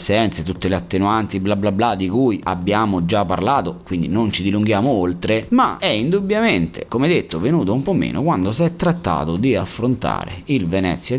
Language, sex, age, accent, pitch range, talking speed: Italian, male, 30-49, native, 90-140 Hz, 175 wpm